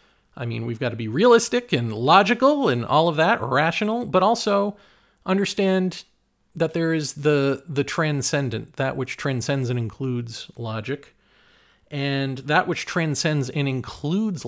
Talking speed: 145 wpm